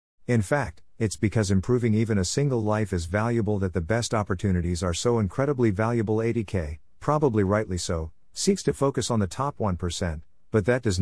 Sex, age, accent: male, 50-69, American